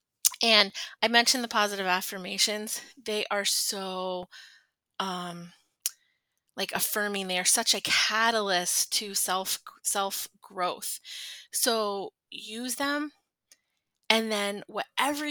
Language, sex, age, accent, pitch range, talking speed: English, female, 20-39, American, 195-240 Hz, 100 wpm